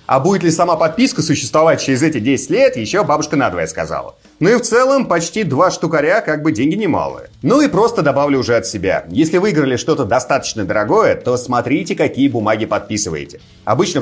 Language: Russian